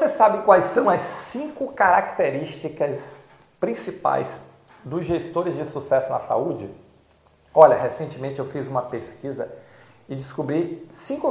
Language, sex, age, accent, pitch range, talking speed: Portuguese, male, 40-59, Brazilian, 135-175 Hz, 120 wpm